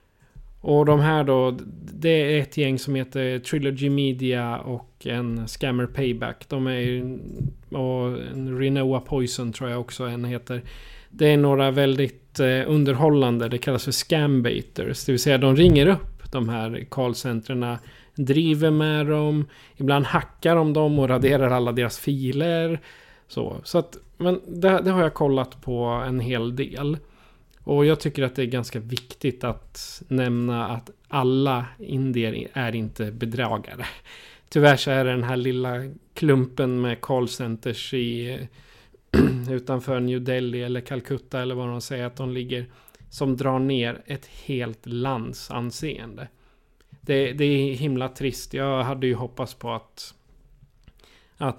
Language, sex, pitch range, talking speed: Swedish, male, 125-140 Hz, 150 wpm